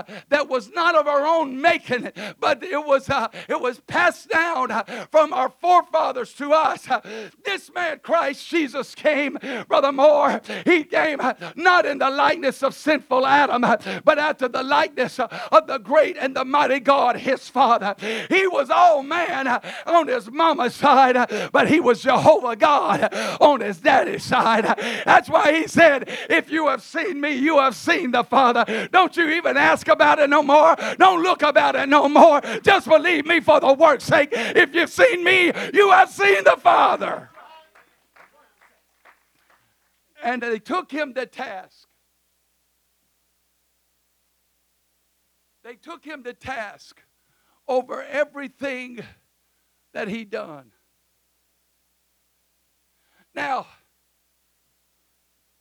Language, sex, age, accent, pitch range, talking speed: English, male, 50-69, American, 215-310 Hz, 135 wpm